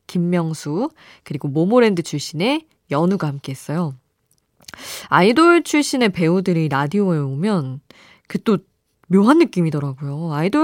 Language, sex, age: Korean, female, 20-39